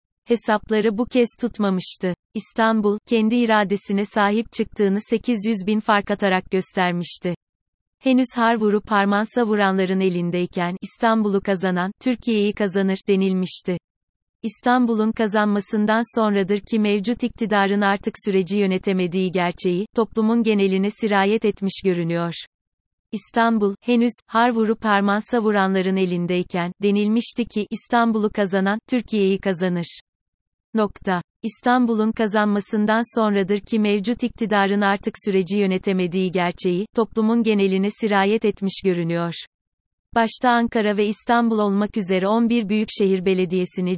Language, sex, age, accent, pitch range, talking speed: Turkish, female, 30-49, native, 190-220 Hz, 105 wpm